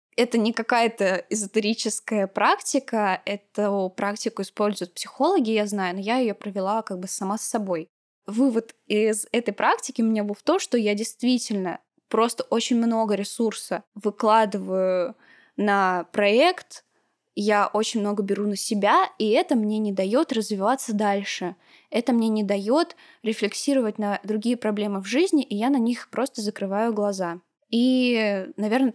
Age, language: 10-29, Russian